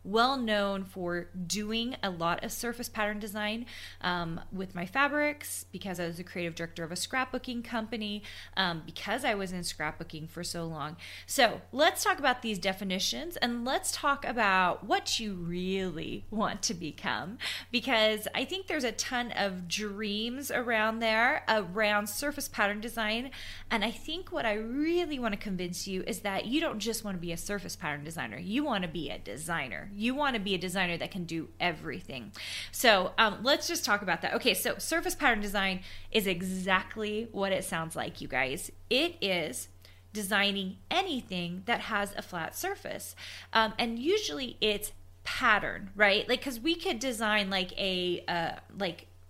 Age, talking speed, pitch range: 20-39, 175 wpm, 180-235 Hz